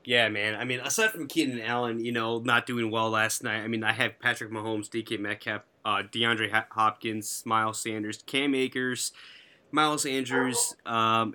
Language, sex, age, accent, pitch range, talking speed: English, male, 20-39, American, 105-120 Hz, 175 wpm